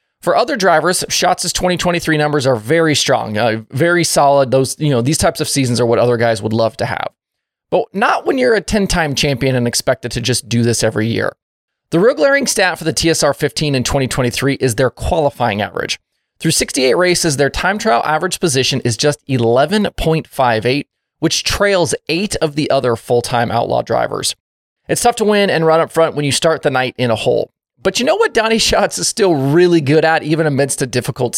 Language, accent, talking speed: English, American, 205 wpm